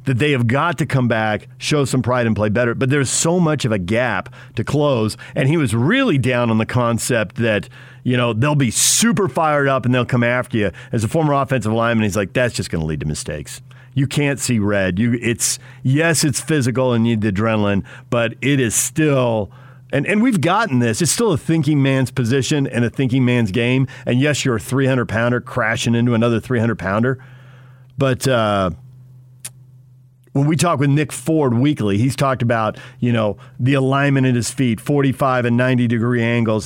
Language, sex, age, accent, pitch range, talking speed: English, male, 50-69, American, 115-135 Hz, 205 wpm